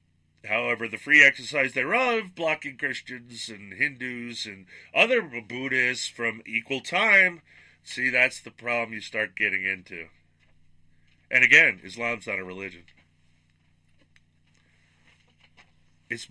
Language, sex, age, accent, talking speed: English, male, 40-59, American, 110 wpm